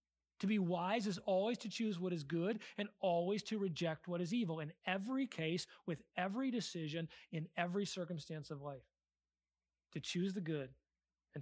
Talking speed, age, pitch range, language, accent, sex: 175 wpm, 30-49, 145-195 Hz, English, American, male